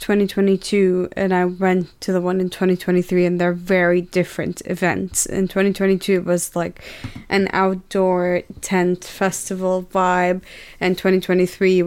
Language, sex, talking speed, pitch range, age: English, female, 130 wpm, 175-190 Hz, 20-39